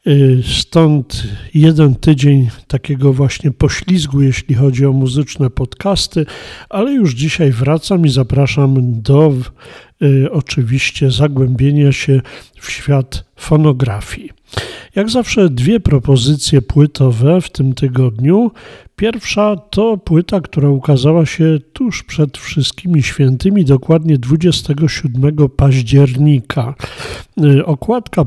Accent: native